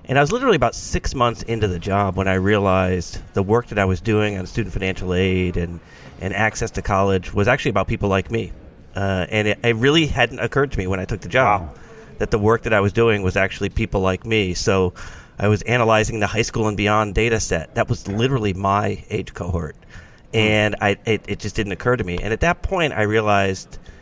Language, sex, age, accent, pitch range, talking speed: English, male, 30-49, American, 95-110 Hz, 230 wpm